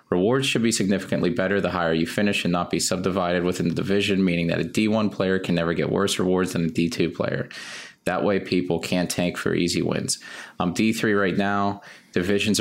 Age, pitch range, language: 30-49, 85-100 Hz, English